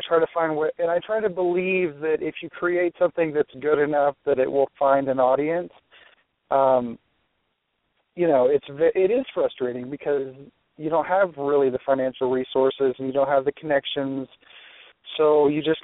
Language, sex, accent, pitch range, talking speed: English, male, American, 130-155 Hz, 175 wpm